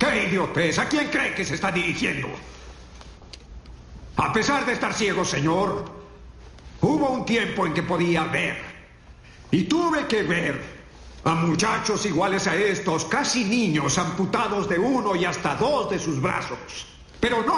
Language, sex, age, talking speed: Spanish, male, 60-79, 150 wpm